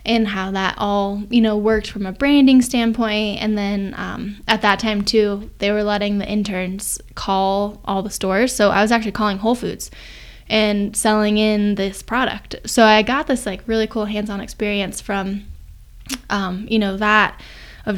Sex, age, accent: female, 10-29, American